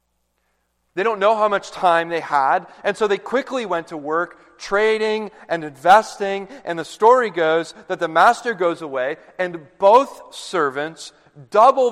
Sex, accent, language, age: male, American, English, 40-59